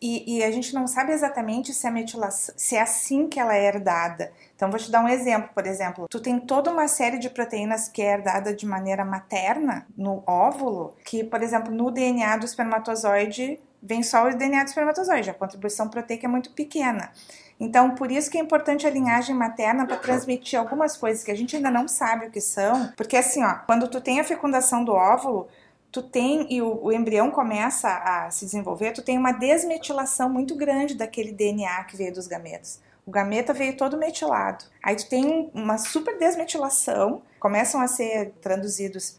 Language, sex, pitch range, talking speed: Portuguese, female, 220-275 Hz, 195 wpm